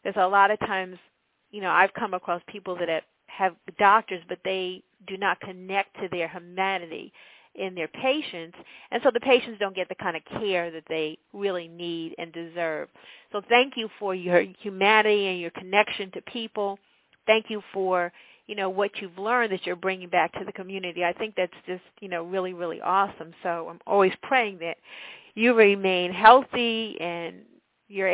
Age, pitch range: 50-69, 180-225 Hz